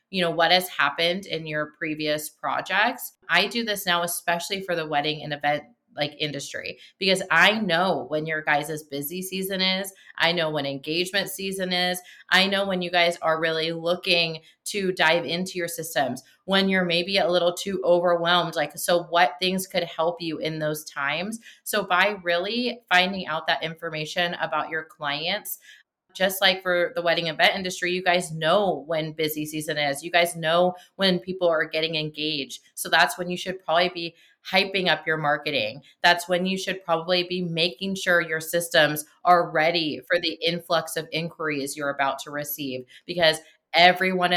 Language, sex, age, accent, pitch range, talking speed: English, female, 30-49, American, 155-180 Hz, 180 wpm